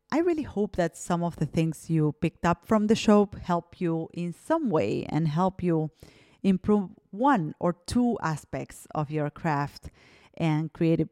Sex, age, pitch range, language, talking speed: female, 30-49, 160-210 Hz, English, 175 wpm